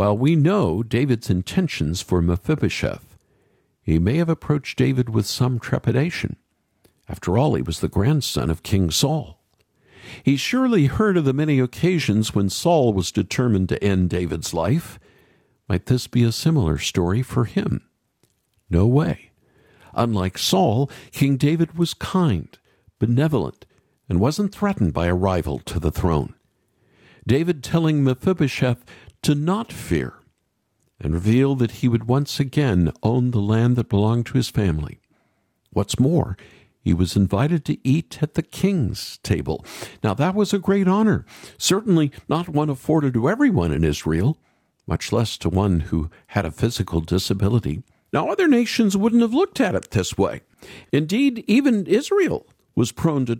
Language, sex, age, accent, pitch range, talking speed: English, male, 50-69, American, 95-155 Hz, 155 wpm